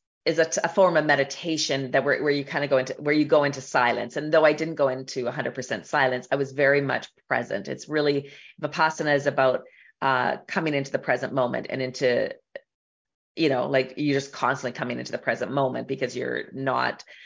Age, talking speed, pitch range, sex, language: 30-49, 220 wpm, 130-155 Hz, female, English